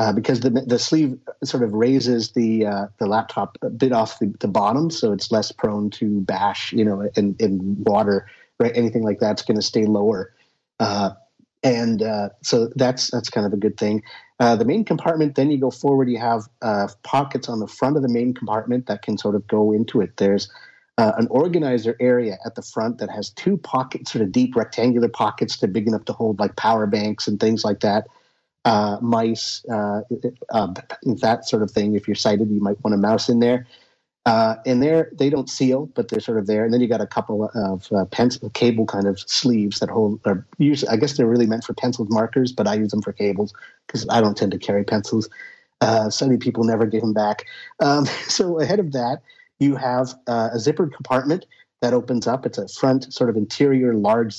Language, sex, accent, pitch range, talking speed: English, male, American, 105-130 Hz, 220 wpm